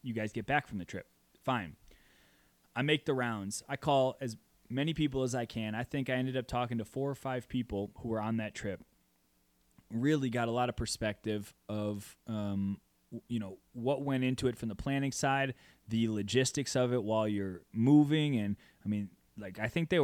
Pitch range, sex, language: 105-125 Hz, male, English